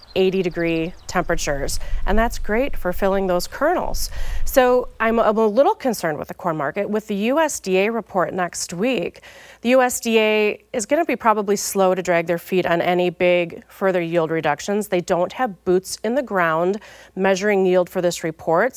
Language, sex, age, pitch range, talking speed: English, female, 30-49, 175-210 Hz, 175 wpm